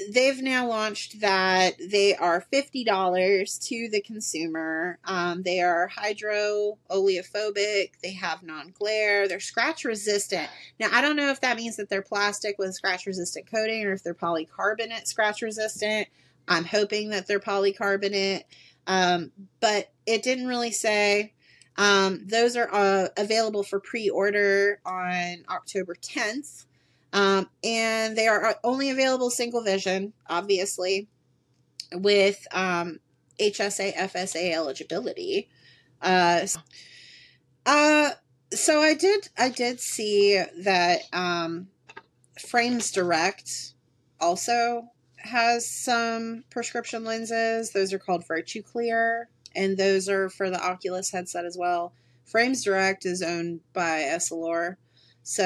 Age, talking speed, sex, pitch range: 30-49, 125 wpm, female, 180-225 Hz